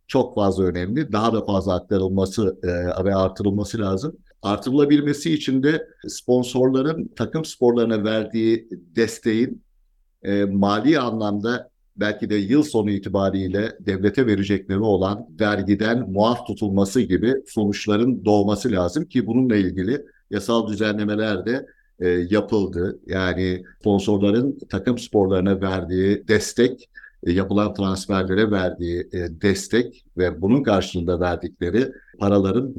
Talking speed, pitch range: 110 wpm, 95-120 Hz